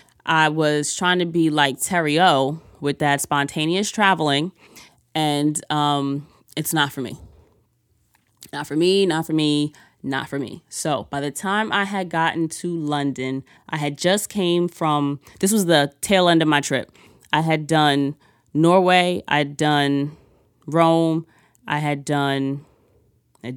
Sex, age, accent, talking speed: female, 20-39, American, 155 wpm